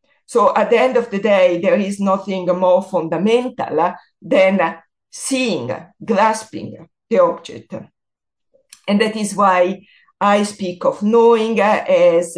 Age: 50-69